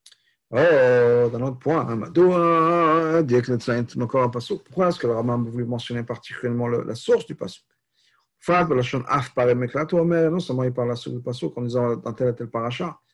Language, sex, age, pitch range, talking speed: French, male, 50-69, 125-170 Hz, 205 wpm